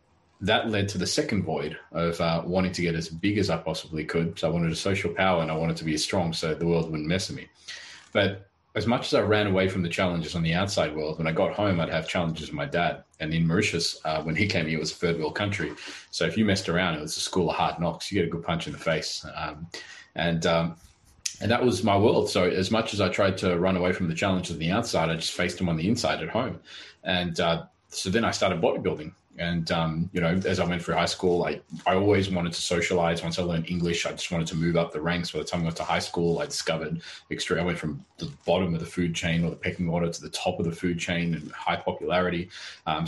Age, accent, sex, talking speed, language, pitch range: 20-39, Australian, male, 275 wpm, English, 85-95 Hz